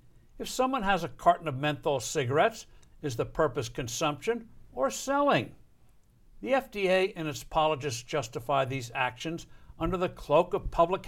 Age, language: 60-79, English